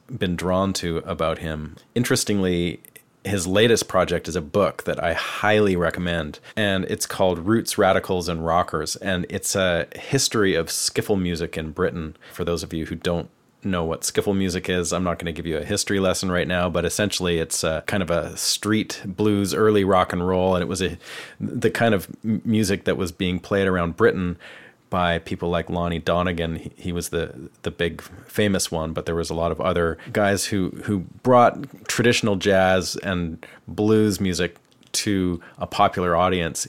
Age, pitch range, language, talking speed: 30-49, 85-100 Hz, English, 185 wpm